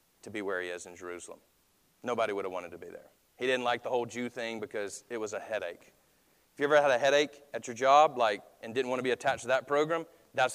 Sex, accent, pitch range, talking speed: male, American, 125-185 Hz, 260 wpm